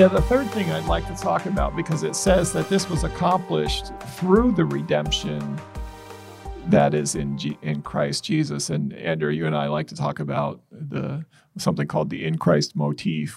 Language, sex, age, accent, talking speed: English, male, 40-59, American, 190 wpm